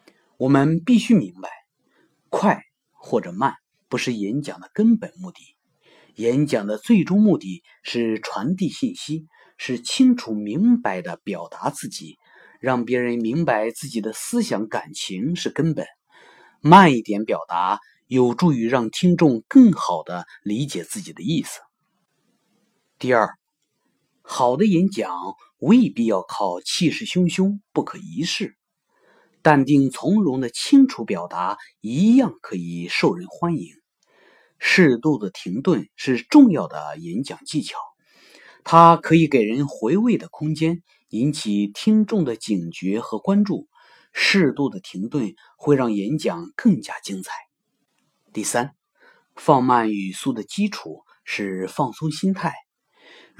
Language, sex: Chinese, male